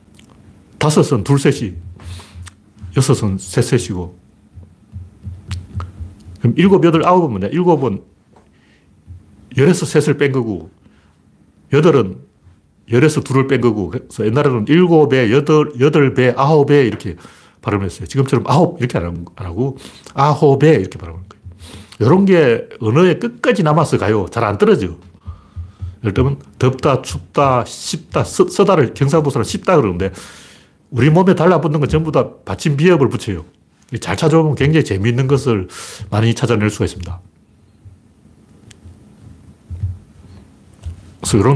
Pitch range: 95-140 Hz